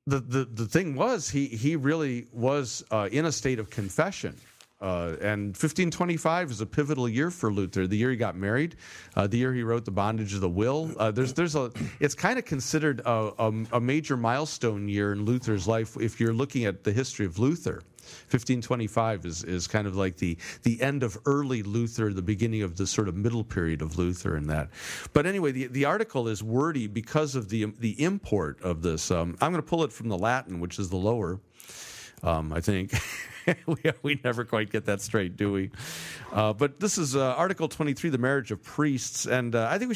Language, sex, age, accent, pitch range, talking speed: English, male, 50-69, American, 100-140 Hz, 215 wpm